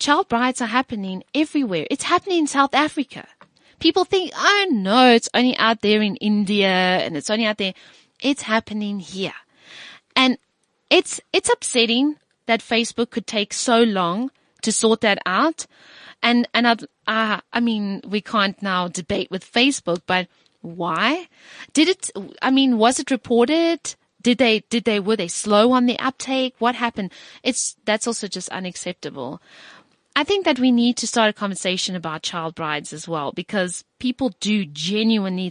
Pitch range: 195-260 Hz